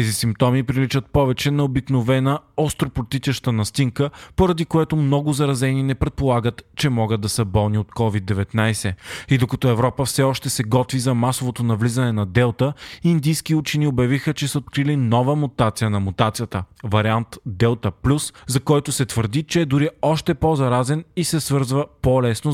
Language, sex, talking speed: Bulgarian, male, 155 wpm